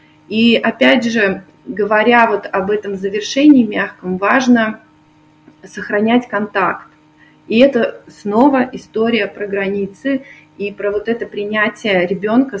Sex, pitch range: female, 185-240 Hz